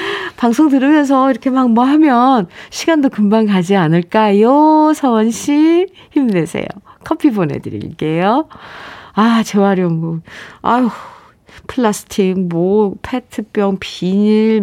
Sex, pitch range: female, 180-260 Hz